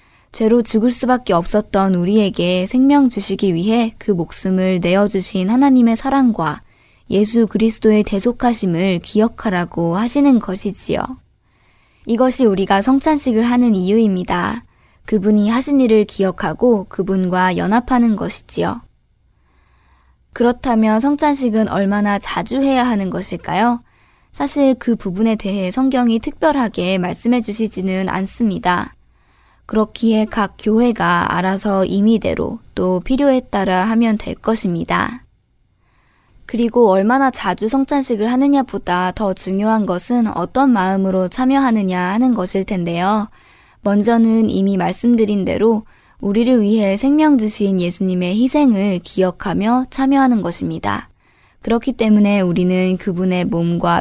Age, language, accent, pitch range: 20-39, Korean, native, 190-240 Hz